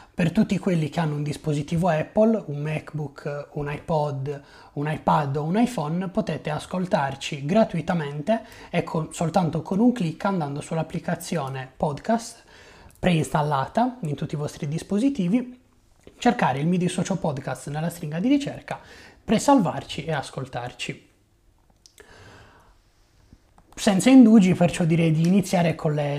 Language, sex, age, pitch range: Italian, male, 30-49, 145-200 Hz